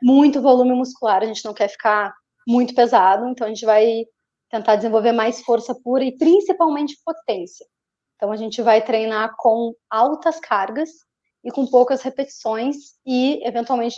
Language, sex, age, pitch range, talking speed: Portuguese, female, 20-39, 215-255 Hz, 160 wpm